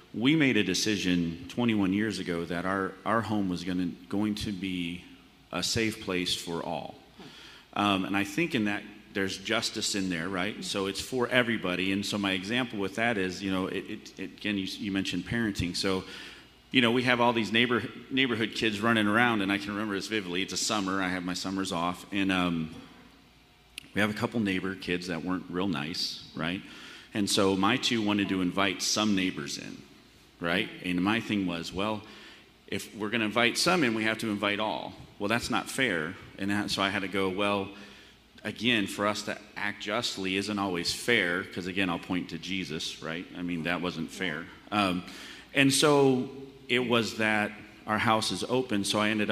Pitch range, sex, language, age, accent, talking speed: 95-110 Hz, male, English, 30-49, American, 195 wpm